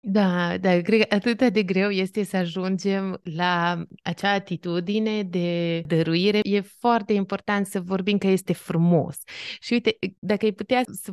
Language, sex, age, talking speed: Romanian, female, 20-39, 155 wpm